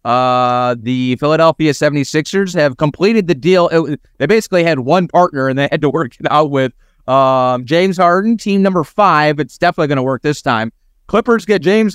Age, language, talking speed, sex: 30-49, English, 190 wpm, male